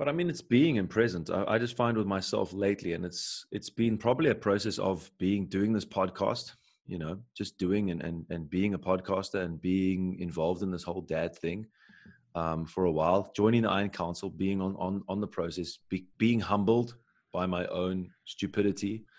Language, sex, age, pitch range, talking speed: English, male, 20-39, 90-105 Hz, 200 wpm